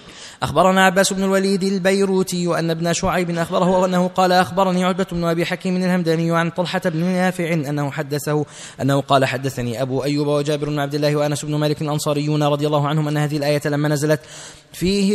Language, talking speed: Arabic, 180 wpm